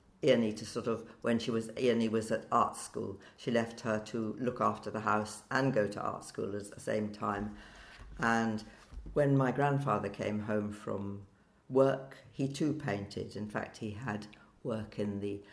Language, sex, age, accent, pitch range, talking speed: English, female, 60-79, British, 105-135 Hz, 180 wpm